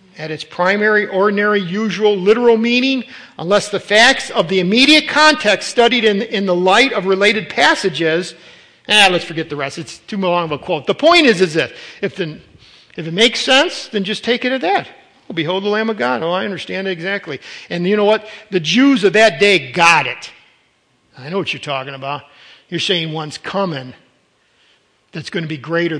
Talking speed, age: 195 wpm, 50-69